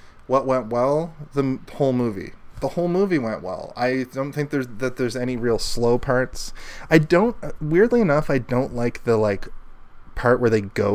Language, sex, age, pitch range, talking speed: English, male, 20-39, 110-135 Hz, 190 wpm